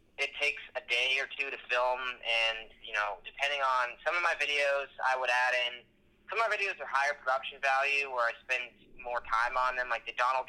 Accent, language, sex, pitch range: American, English, male, 105-125 Hz